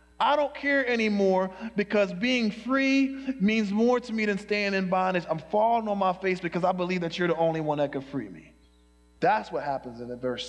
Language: English